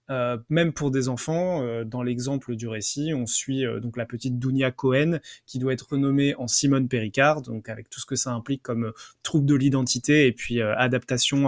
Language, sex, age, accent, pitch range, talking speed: French, male, 20-39, French, 120-145 Hz, 215 wpm